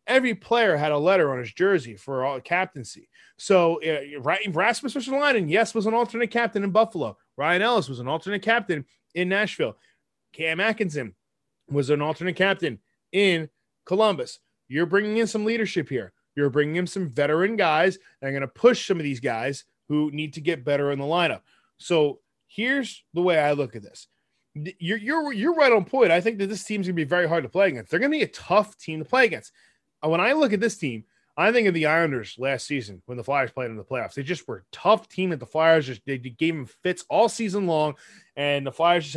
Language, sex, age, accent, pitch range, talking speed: English, male, 20-39, American, 145-210 Hz, 230 wpm